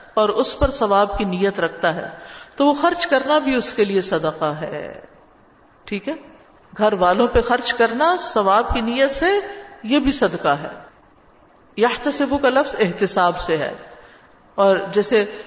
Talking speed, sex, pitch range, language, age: 165 wpm, female, 195-260 Hz, Urdu, 50-69